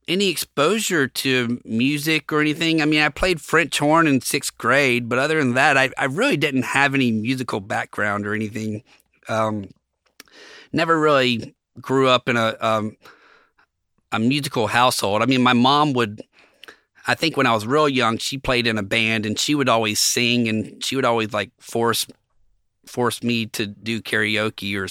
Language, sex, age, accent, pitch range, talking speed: English, male, 30-49, American, 110-140 Hz, 180 wpm